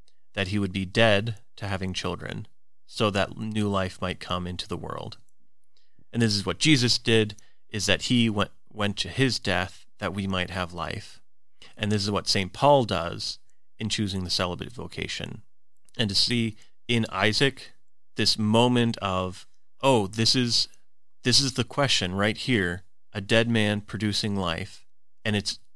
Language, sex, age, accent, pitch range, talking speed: English, male, 30-49, American, 95-115 Hz, 170 wpm